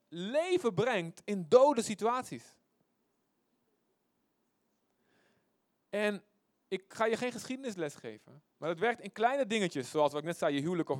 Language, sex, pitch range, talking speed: Dutch, male, 145-200 Hz, 140 wpm